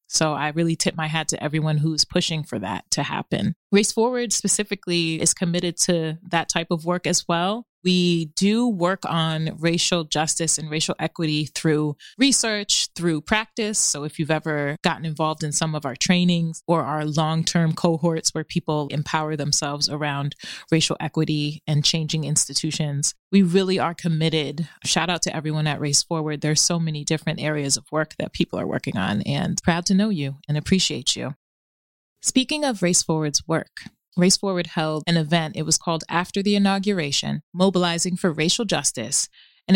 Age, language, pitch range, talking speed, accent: 20-39, English, 155-185 Hz, 175 wpm, American